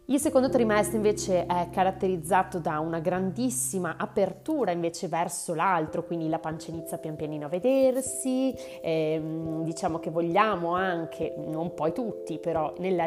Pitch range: 165-210 Hz